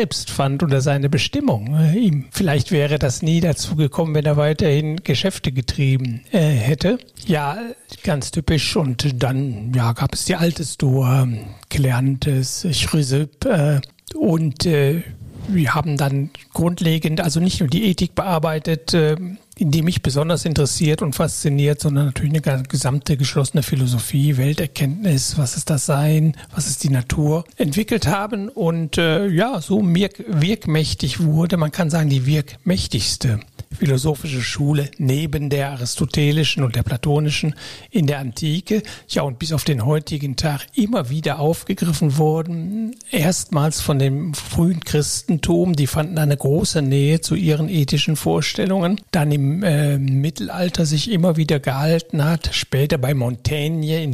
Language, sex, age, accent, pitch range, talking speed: German, male, 60-79, German, 140-165 Hz, 140 wpm